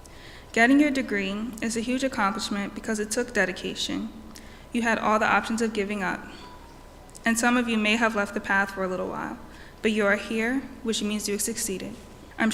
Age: 20-39